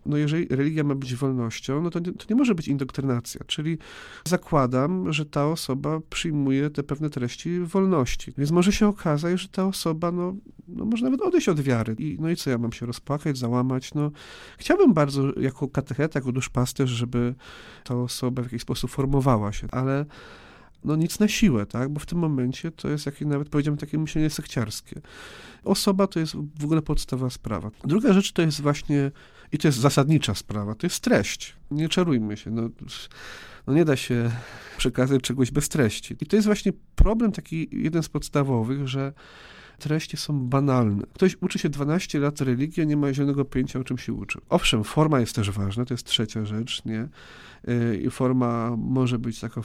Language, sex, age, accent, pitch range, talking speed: Polish, male, 40-59, native, 125-160 Hz, 190 wpm